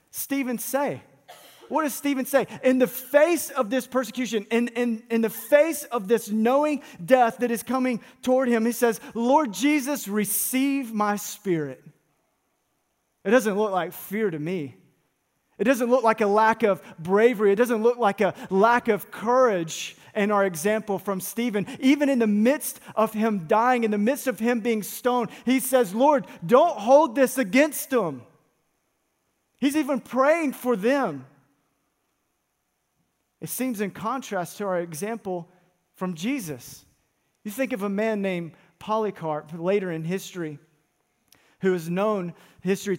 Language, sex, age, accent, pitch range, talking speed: English, male, 30-49, American, 190-250 Hz, 155 wpm